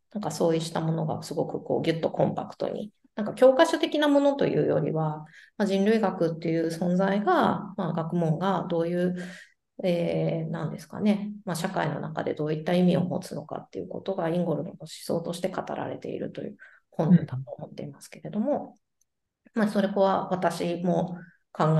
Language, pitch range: Japanese, 155-205 Hz